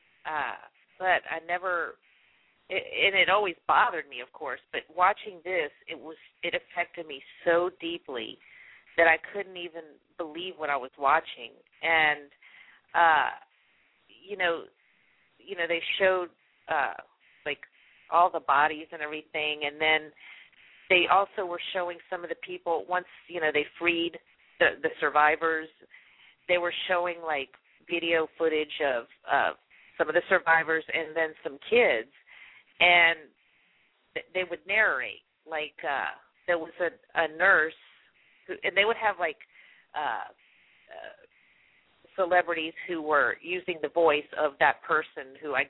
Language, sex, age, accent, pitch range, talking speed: English, female, 40-59, American, 155-180 Hz, 145 wpm